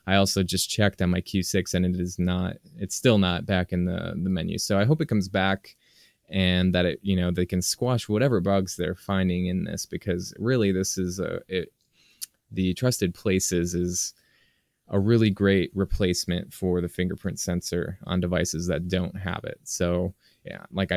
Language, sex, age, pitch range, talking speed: English, male, 20-39, 90-100 Hz, 190 wpm